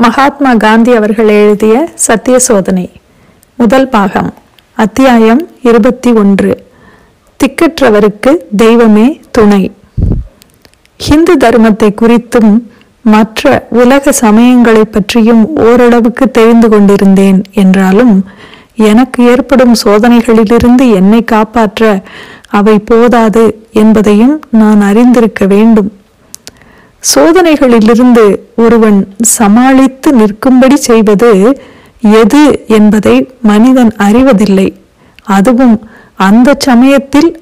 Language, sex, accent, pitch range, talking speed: Tamil, female, native, 215-255 Hz, 75 wpm